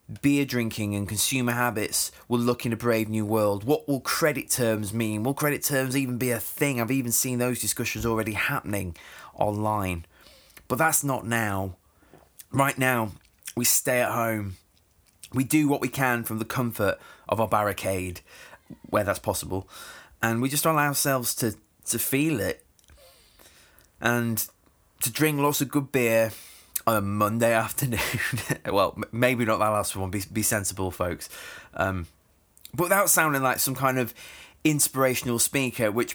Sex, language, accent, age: male, English, British, 20-39